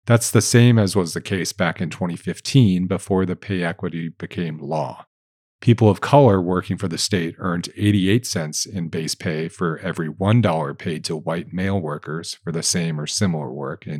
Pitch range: 90-105 Hz